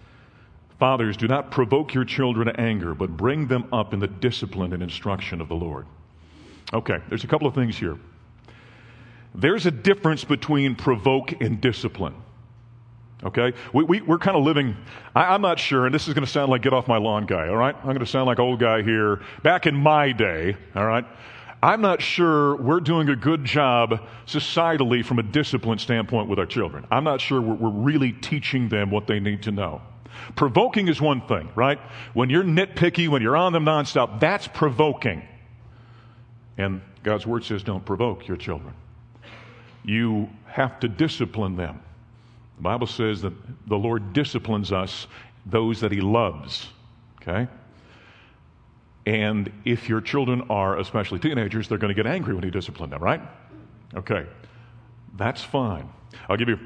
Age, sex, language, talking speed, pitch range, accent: 40-59, male, English, 175 wpm, 105-130 Hz, American